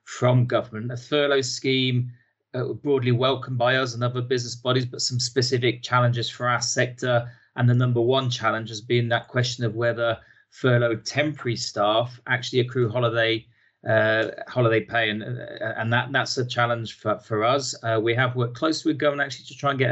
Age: 30-49